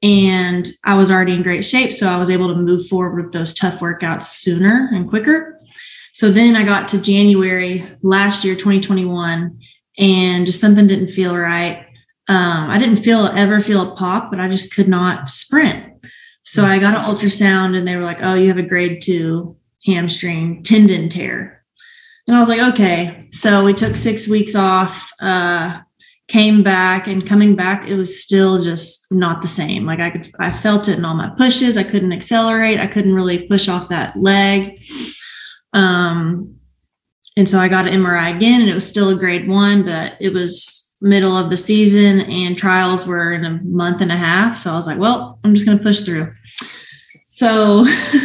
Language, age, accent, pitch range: English, 20-39, American, 180-210 Hz